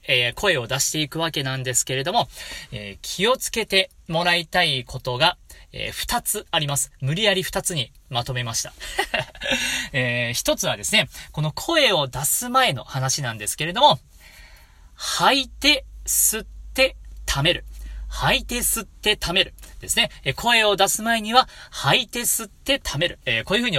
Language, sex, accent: Japanese, male, native